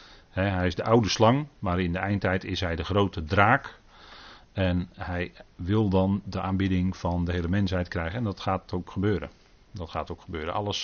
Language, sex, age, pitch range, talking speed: Dutch, male, 40-59, 90-105 Hz, 200 wpm